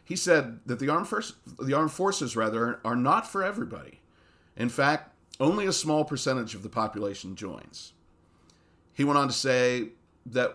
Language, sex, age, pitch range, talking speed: English, male, 40-59, 85-130 Hz, 160 wpm